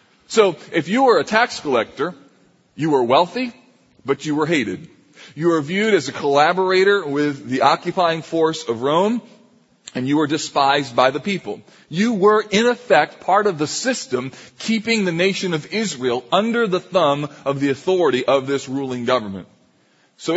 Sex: male